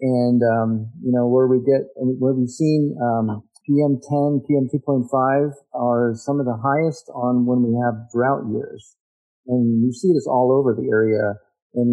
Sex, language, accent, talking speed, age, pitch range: male, English, American, 170 wpm, 50-69, 115-135 Hz